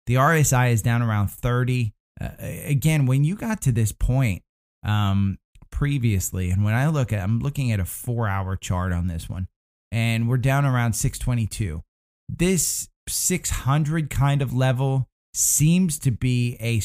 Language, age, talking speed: English, 20-39, 155 wpm